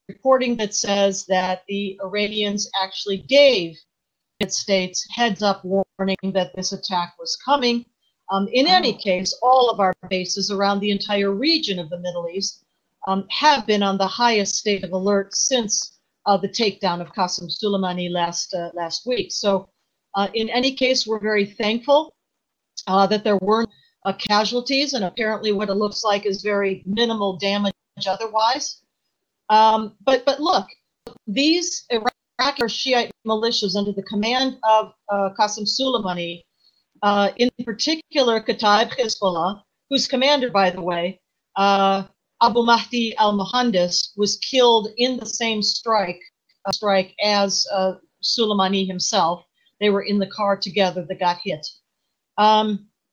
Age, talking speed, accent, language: 40-59, 150 wpm, American, English